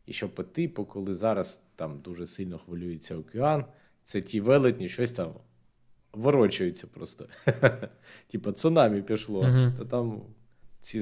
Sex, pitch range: male, 100-125 Hz